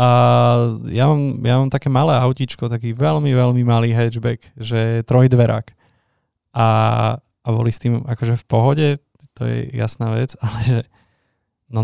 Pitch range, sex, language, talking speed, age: 115-130 Hz, male, Slovak, 150 wpm, 20-39